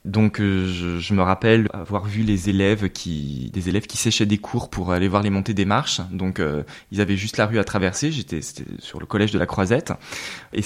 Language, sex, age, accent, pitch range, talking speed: French, male, 20-39, French, 95-115 Hz, 230 wpm